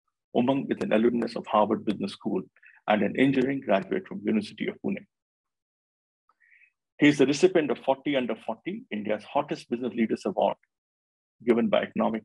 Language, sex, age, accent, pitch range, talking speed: English, male, 50-69, Indian, 105-130 Hz, 155 wpm